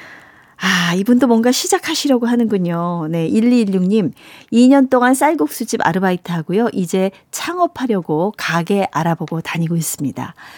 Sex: female